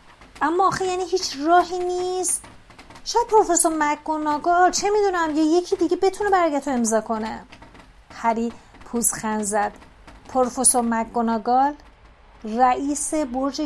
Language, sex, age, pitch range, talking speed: Persian, female, 30-49, 230-315 Hz, 110 wpm